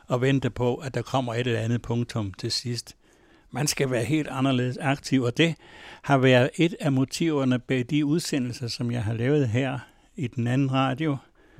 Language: Danish